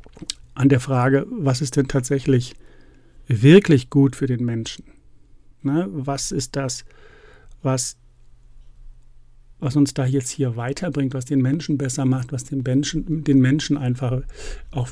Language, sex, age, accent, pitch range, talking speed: German, male, 50-69, German, 125-140 Hz, 140 wpm